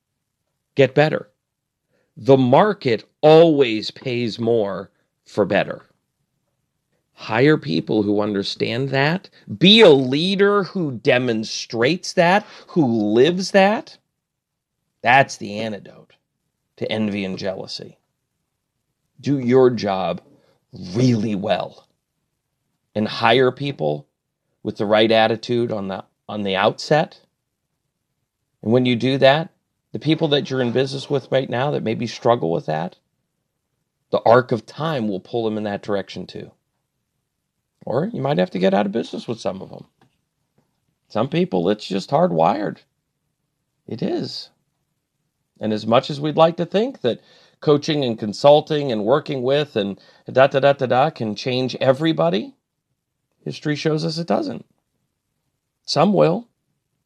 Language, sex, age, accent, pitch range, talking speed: English, male, 40-59, American, 110-150 Hz, 135 wpm